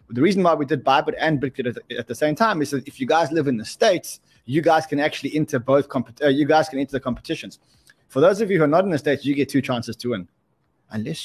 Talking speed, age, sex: 270 wpm, 20-39, male